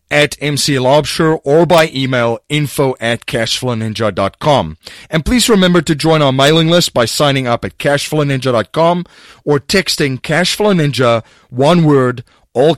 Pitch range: 110-150 Hz